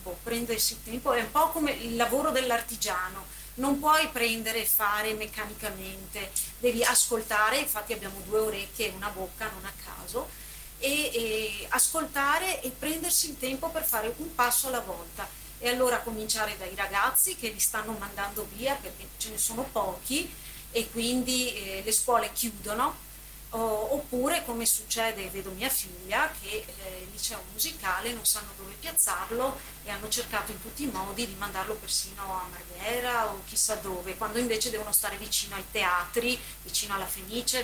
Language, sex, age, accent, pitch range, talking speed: Italian, female, 40-59, native, 200-255 Hz, 160 wpm